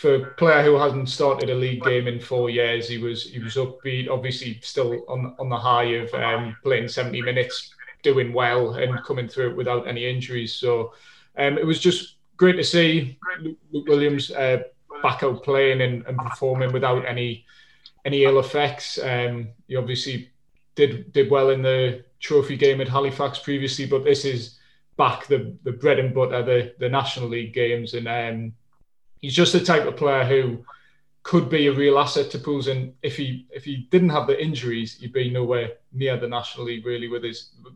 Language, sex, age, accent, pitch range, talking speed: English, male, 20-39, British, 125-145 Hz, 195 wpm